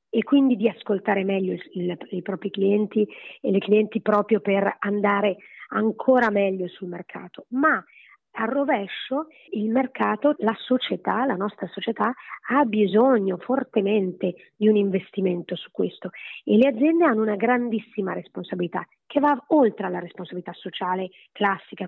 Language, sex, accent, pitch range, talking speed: Italian, female, native, 195-265 Hz, 145 wpm